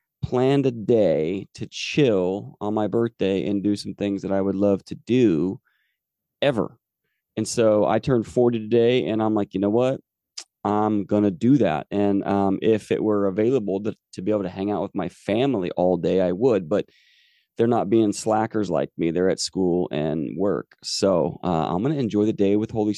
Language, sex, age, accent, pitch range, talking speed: English, male, 30-49, American, 100-120 Hz, 200 wpm